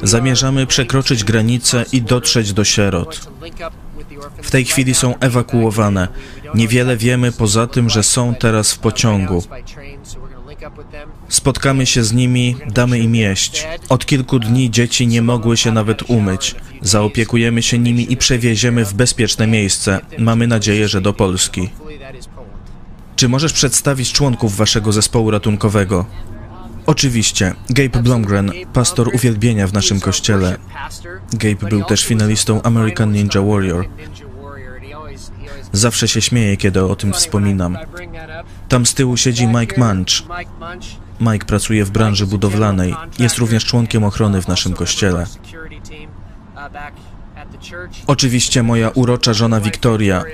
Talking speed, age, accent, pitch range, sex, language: 120 wpm, 20-39, native, 100-120 Hz, male, Polish